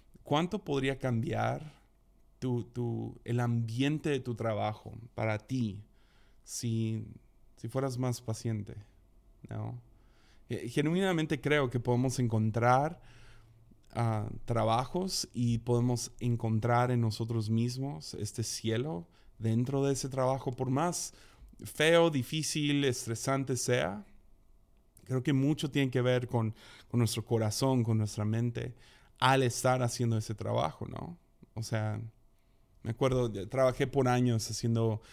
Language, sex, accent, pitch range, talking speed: Spanish, male, Mexican, 110-130 Hz, 120 wpm